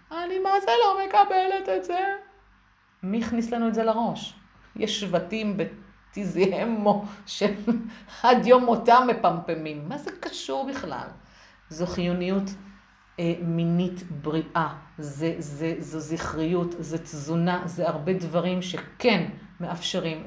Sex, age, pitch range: female, 50-69, 170-215 Hz